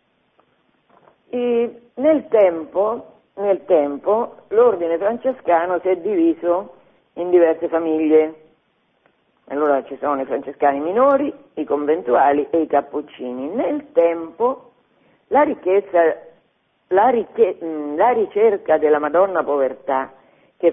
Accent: native